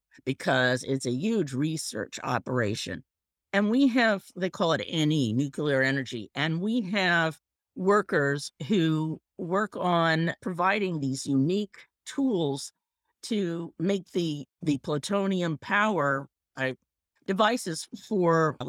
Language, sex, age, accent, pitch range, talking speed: English, female, 50-69, American, 135-190 Hz, 115 wpm